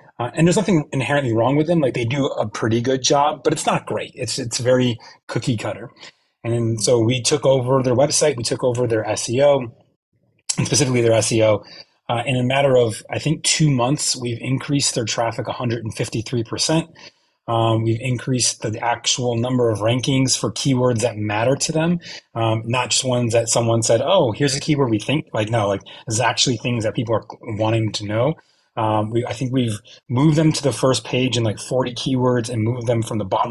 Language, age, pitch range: English, 30-49, 115-140 Hz